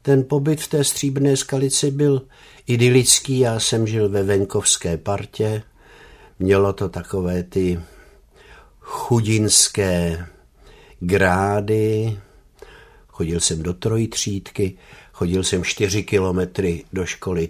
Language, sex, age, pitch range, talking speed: Czech, male, 60-79, 85-110 Hz, 105 wpm